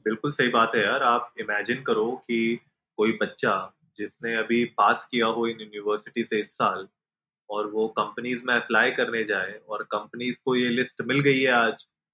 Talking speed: 185 wpm